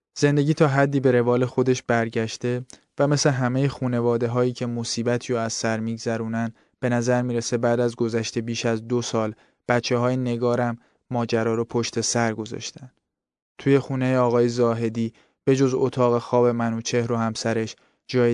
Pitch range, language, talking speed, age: 115-125 Hz, Arabic, 155 wpm, 20-39